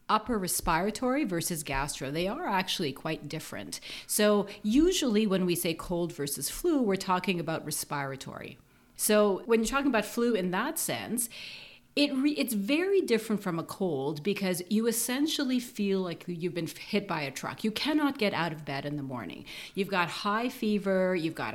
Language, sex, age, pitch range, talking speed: English, female, 40-59, 160-215 Hz, 175 wpm